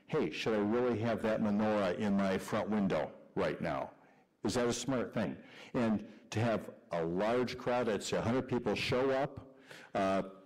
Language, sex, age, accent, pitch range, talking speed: English, male, 60-79, American, 100-135 Hz, 180 wpm